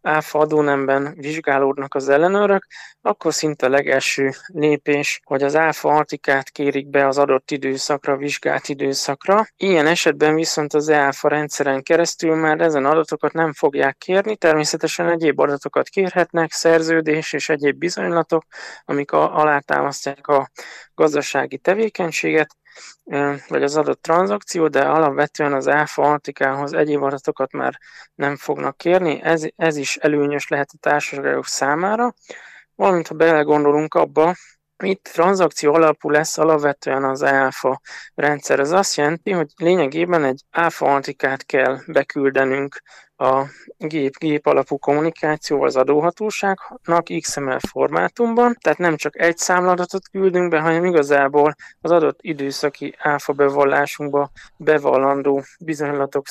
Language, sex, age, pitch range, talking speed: Hungarian, male, 20-39, 140-165 Hz, 125 wpm